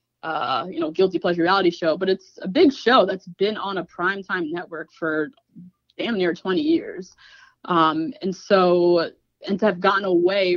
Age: 20-39